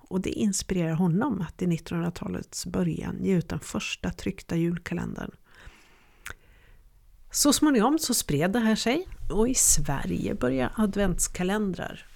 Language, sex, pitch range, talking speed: Swedish, female, 160-210 Hz, 130 wpm